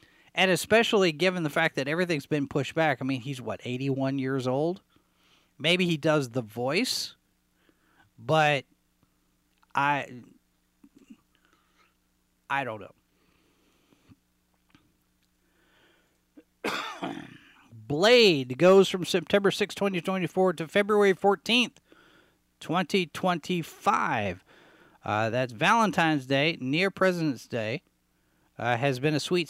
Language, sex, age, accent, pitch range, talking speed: English, male, 40-59, American, 135-185 Hz, 100 wpm